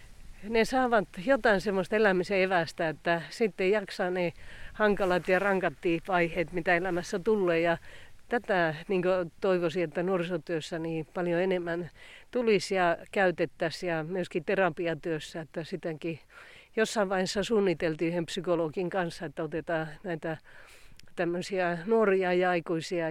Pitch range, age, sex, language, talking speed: 170-205 Hz, 40-59, female, Finnish, 125 wpm